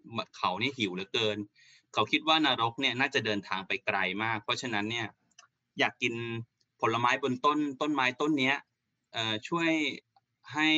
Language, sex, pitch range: Thai, male, 105-140 Hz